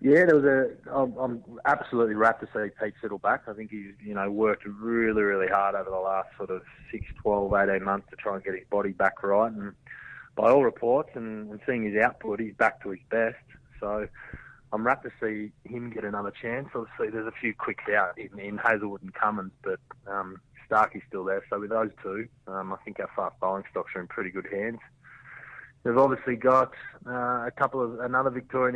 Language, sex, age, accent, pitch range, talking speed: English, male, 20-39, Australian, 100-125 Hz, 210 wpm